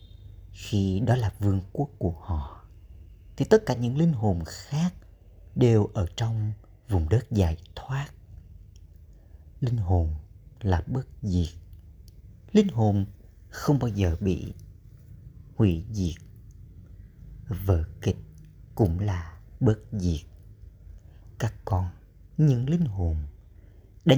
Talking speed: 115 wpm